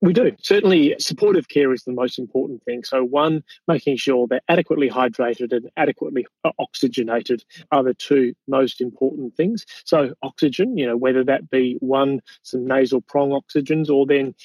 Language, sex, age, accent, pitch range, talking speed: English, male, 30-49, Australian, 125-150 Hz, 165 wpm